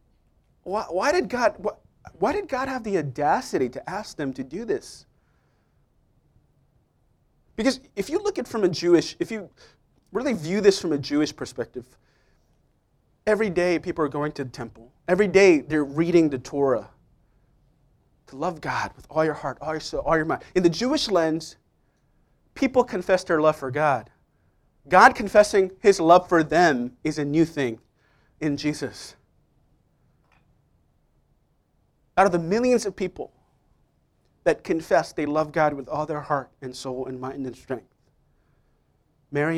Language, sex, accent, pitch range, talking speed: English, male, American, 130-175 Hz, 160 wpm